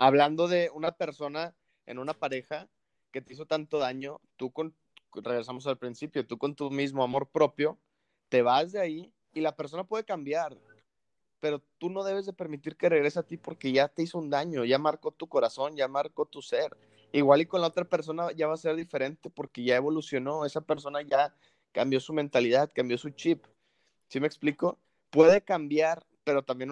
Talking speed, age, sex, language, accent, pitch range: 195 wpm, 20-39, male, Spanish, Mexican, 130-165 Hz